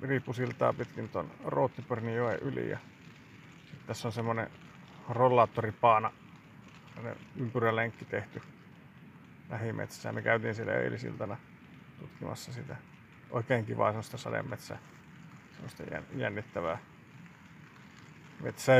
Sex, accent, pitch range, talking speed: male, native, 120-140 Hz, 75 wpm